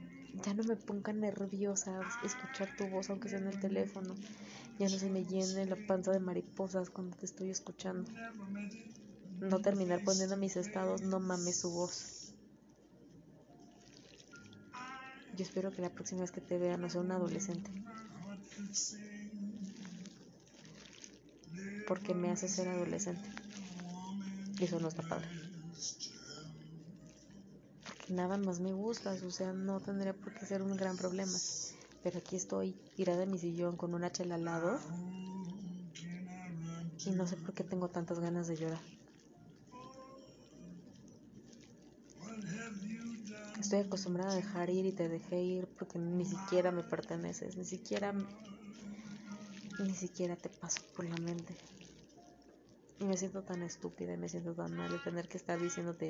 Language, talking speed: Spanish, 140 wpm